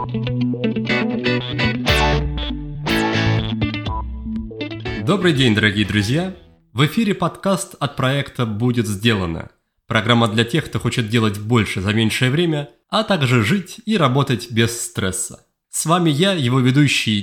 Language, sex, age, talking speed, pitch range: Russian, male, 30-49, 115 wpm, 115-170 Hz